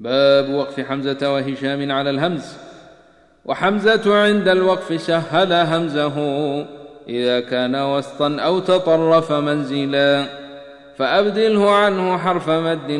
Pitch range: 140-165 Hz